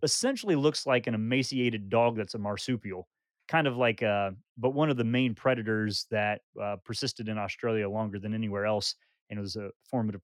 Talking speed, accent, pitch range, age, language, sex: 195 wpm, American, 110-135 Hz, 30-49, English, male